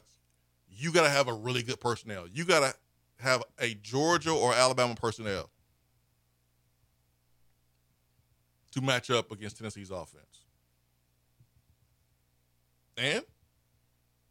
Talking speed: 90 wpm